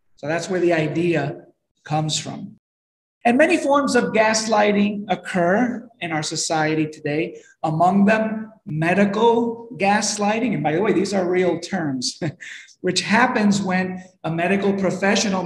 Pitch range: 160-215 Hz